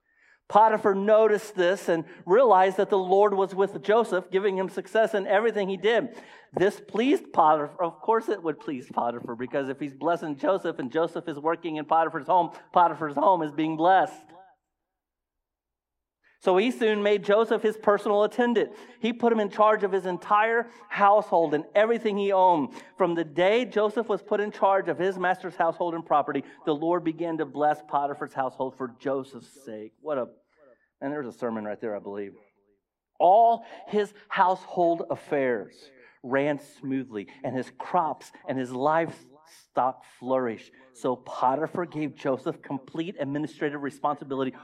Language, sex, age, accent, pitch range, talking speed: English, male, 40-59, American, 135-200 Hz, 160 wpm